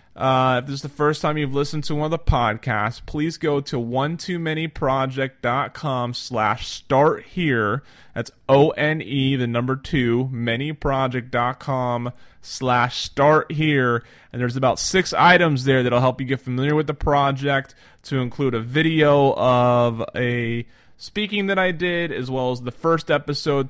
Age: 20-39